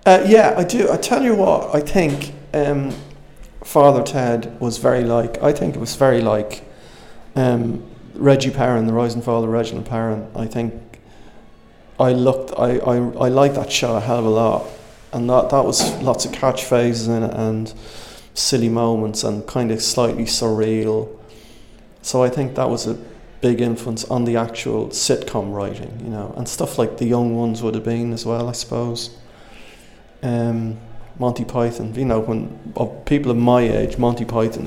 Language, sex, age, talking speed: English, male, 30-49, 180 wpm